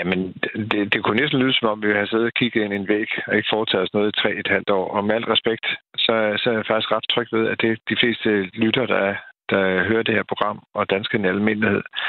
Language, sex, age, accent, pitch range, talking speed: Danish, male, 50-69, native, 105-115 Hz, 270 wpm